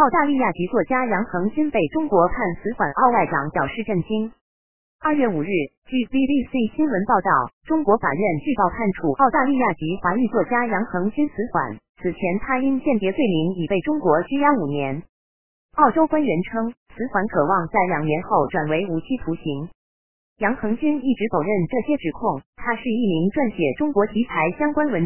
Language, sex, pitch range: Chinese, female, 170-255 Hz